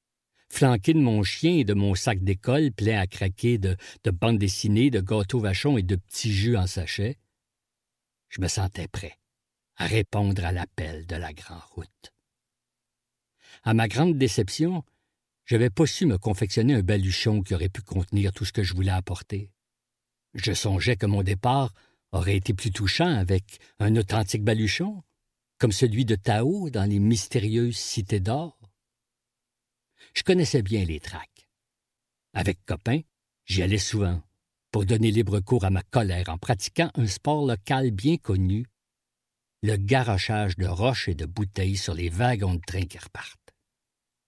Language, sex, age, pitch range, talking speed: French, male, 50-69, 95-120 Hz, 160 wpm